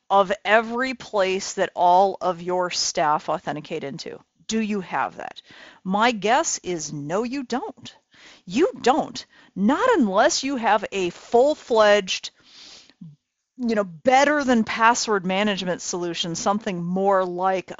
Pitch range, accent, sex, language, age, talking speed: 180-230 Hz, American, female, English, 40-59, 120 wpm